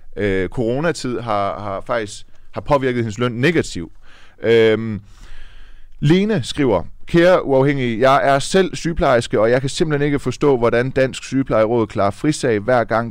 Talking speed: 145 wpm